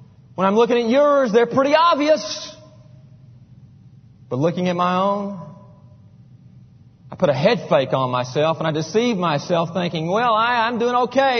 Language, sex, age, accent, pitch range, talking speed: English, male, 40-59, American, 135-205 Hz, 155 wpm